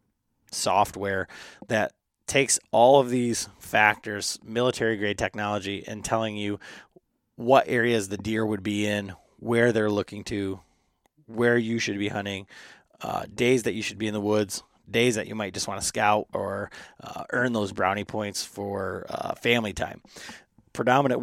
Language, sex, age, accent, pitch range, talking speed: English, male, 30-49, American, 100-120 Hz, 160 wpm